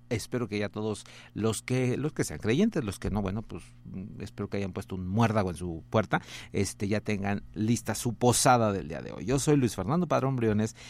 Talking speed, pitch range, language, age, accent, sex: 220 wpm, 100-130 Hz, Spanish, 50-69, Mexican, male